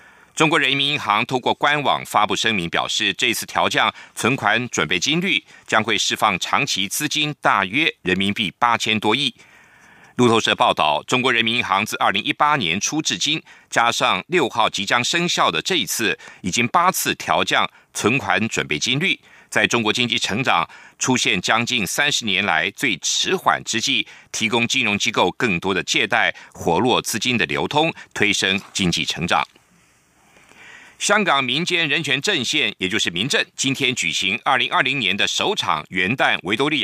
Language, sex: German, male